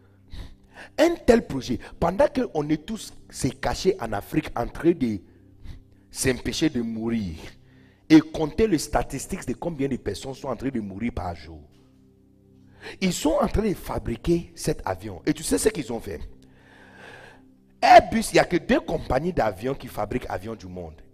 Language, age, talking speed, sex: French, 50-69, 165 wpm, male